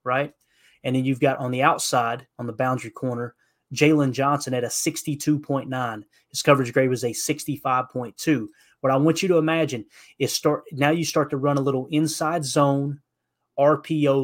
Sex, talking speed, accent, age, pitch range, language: male, 200 wpm, American, 30-49, 130-150 Hz, English